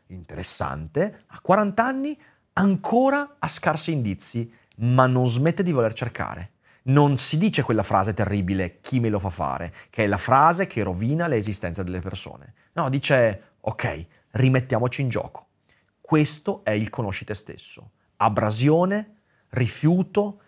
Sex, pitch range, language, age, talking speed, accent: male, 105-175 Hz, Italian, 30-49, 140 wpm, native